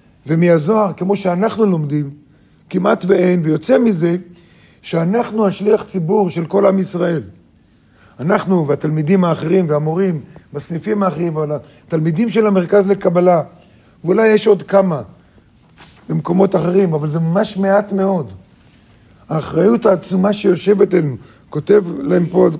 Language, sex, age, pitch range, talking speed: Hebrew, male, 50-69, 160-205 Hz, 115 wpm